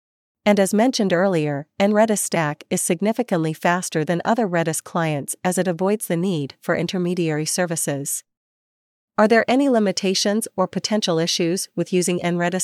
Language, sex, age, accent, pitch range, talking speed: English, female, 40-59, American, 165-205 Hz, 145 wpm